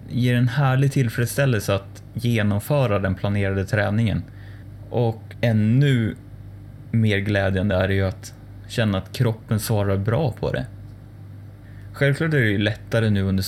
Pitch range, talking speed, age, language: 100-120 Hz, 140 wpm, 20-39, Swedish